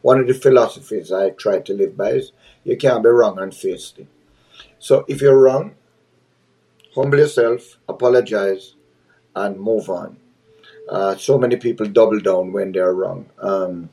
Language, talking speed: English, 155 wpm